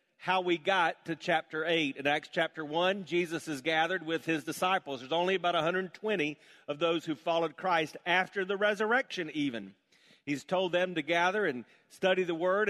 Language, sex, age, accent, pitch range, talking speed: English, male, 40-59, American, 145-185 Hz, 180 wpm